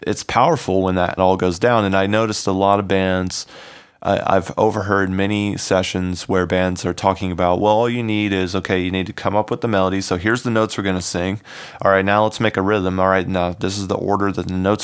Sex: male